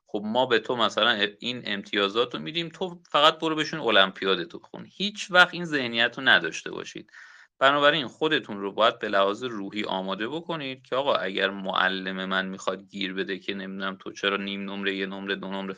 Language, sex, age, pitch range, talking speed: Persian, male, 30-49, 95-135 Hz, 190 wpm